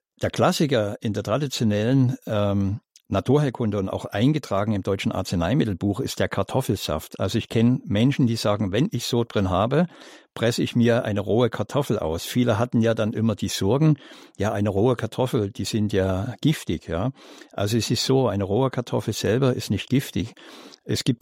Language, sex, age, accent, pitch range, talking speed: German, male, 60-79, German, 100-125 Hz, 180 wpm